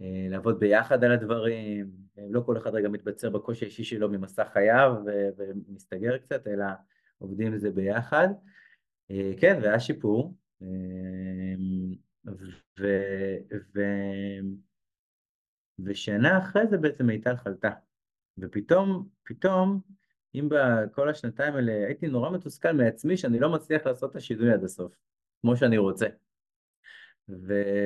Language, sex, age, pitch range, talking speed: Hebrew, male, 30-49, 95-120 Hz, 120 wpm